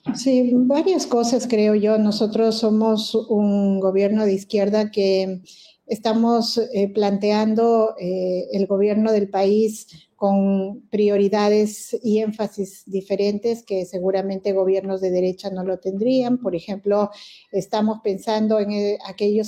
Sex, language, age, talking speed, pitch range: female, Spanish, 40-59, 115 wpm, 195-220 Hz